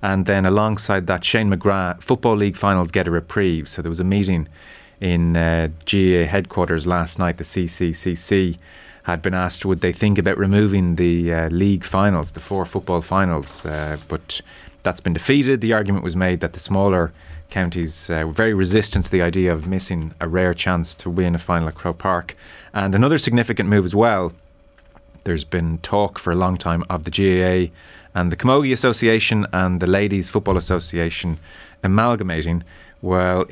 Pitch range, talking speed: 85-100 Hz, 180 wpm